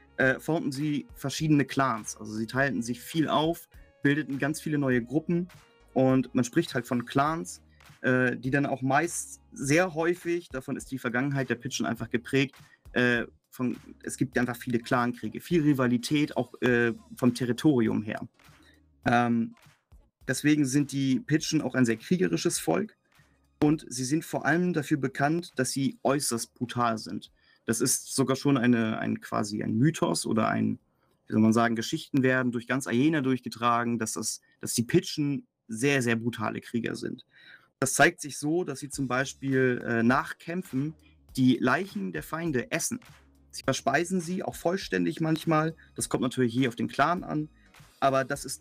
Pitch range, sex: 115-145 Hz, male